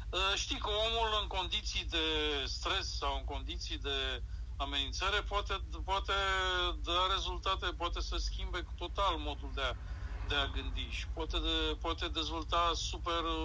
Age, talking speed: 50-69, 150 wpm